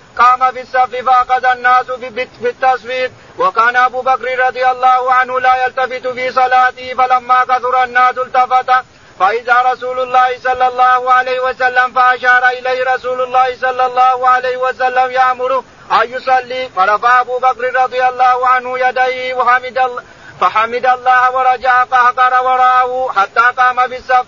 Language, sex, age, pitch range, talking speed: Arabic, male, 50-69, 250-255 Hz, 135 wpm